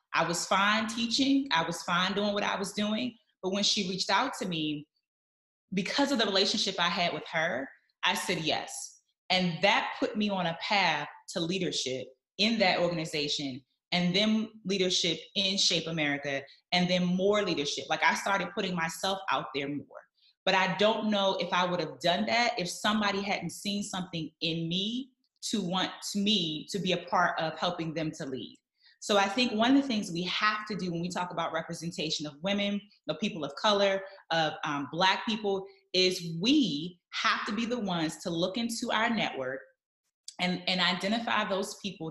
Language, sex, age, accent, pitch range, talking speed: English, female, 20-39, American, 170-215 Hz, 190 wpm